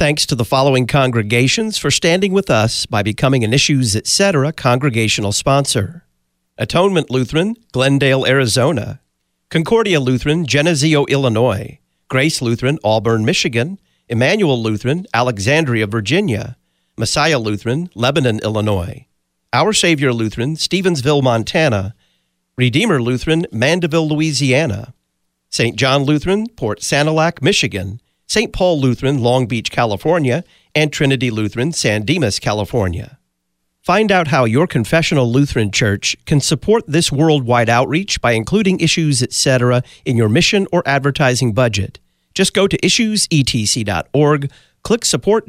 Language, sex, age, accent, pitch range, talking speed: English, male, 40-59, American, 115-160 Hz, 120 wpm